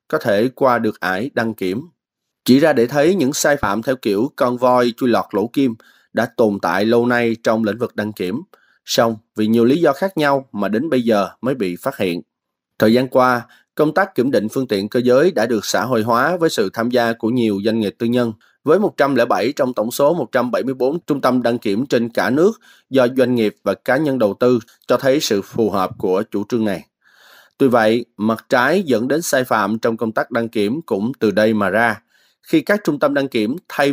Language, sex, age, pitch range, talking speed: Vietnamese, male, 20-39, 110-135 Hz, 225 wpm